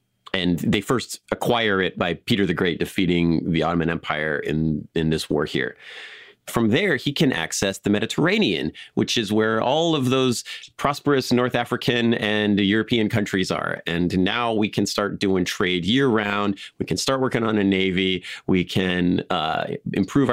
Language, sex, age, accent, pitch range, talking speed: English, male, 30-49, American, 95-120 Hz, 170 wpm